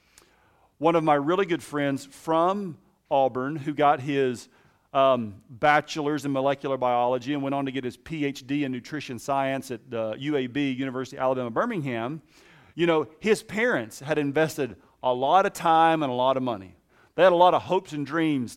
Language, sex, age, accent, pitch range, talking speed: English, male, 40-59, American, 115-145 Hz, 180 wpm